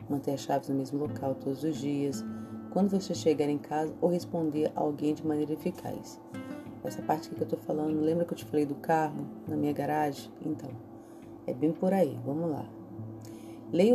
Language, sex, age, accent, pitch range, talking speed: Portuguese, female, 30-49, Brazilian, 115-180 Hz, 200 wpm